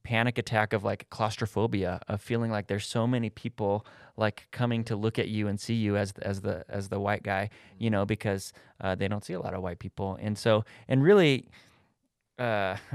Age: 30-49